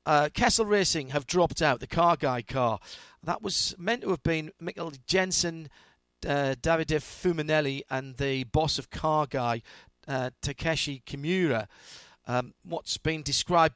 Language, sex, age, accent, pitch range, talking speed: English, male, 50-69, British, 125-160 Hz, 150 wpm